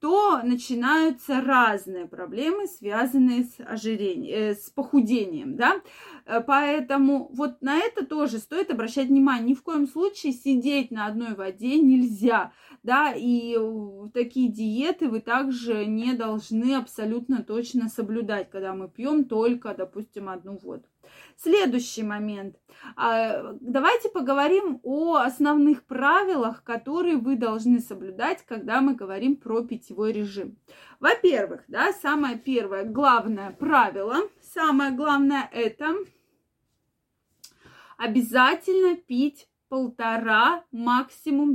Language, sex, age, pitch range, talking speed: Russian, female, 20-39, 225-295 Hz, 110 wpm